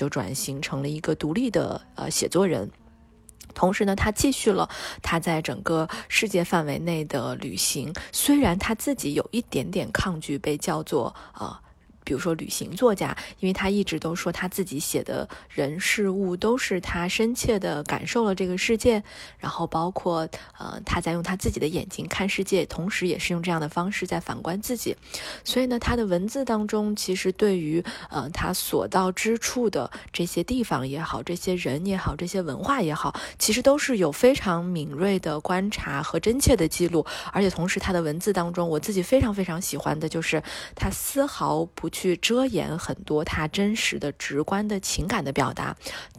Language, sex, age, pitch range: Chinese, female, 20-39, 155-210 Hz